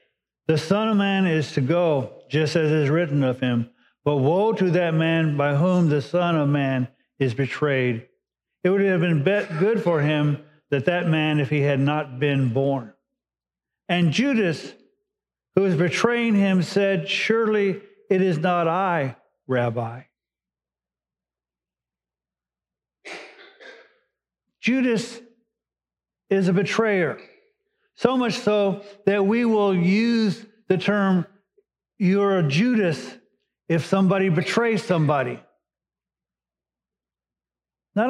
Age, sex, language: 50-69, male, English